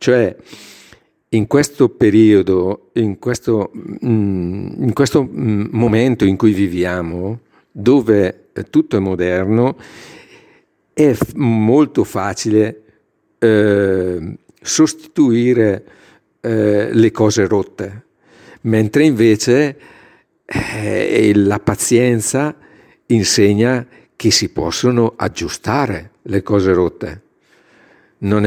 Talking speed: 80 wpm